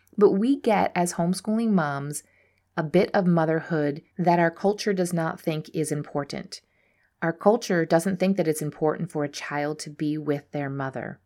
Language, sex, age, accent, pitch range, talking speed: English, female, 30-49, American, 155-190 Hz, 175 wpm